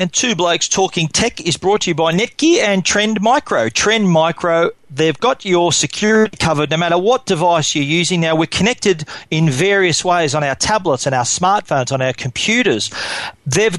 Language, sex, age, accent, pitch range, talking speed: English, male, 40-59, Australian, 145-180 Hz, 185 wpm